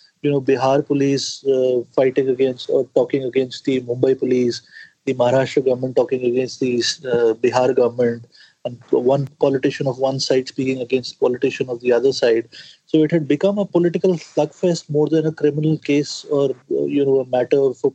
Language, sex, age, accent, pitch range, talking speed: English, male, 30-49, Indian, 135-165 Hz, 180 wpm